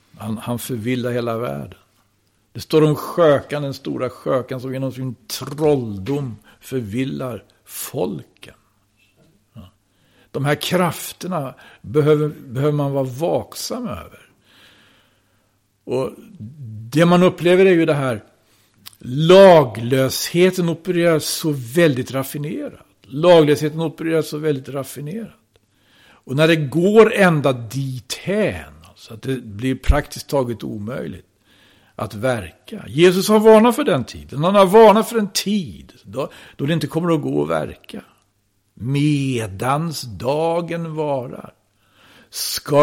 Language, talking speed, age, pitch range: Swedish, 120 wpm, 60-79, 110-155 Hz